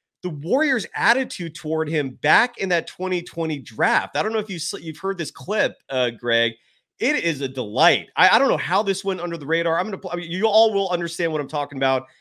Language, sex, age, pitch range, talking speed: English, male, 30-49, 130-180 Hz, 230 wpm